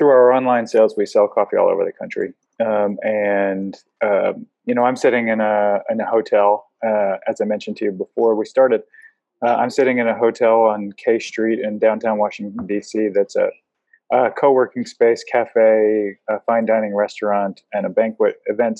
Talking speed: 190 wpm